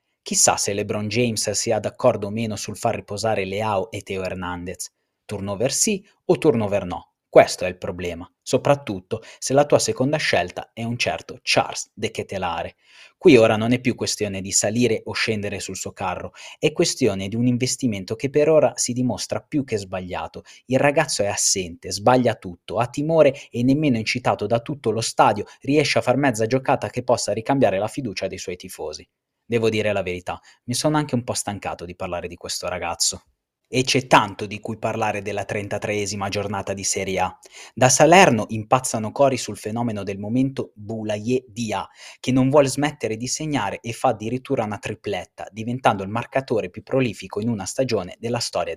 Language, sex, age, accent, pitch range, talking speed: Italian, male, 20-39, native, 100-130 Hz, 180 wpm